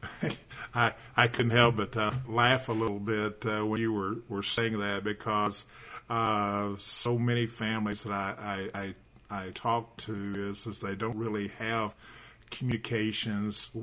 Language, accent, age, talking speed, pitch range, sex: English, American, 50-69, 155 wpm, 100-115 Hz, male